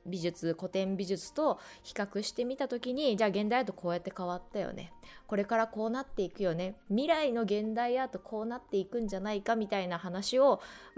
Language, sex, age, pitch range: Japanese, female, 20-39, 180-235 Hz